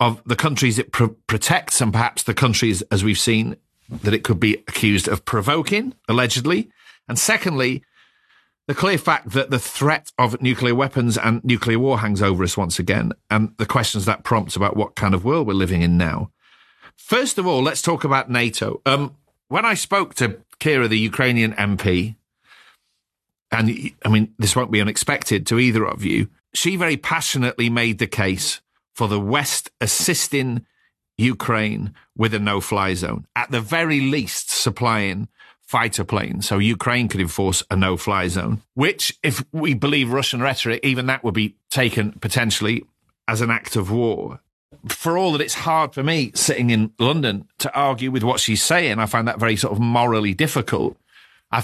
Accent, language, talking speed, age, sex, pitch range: British, English, 175 wpm, 40-59, male, 110-135 Hz